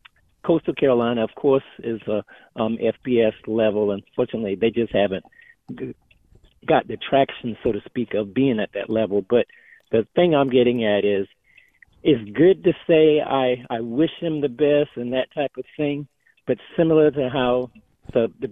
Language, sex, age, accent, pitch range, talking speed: English, male, 50-69, American, 115-145 Hz, 170 wpm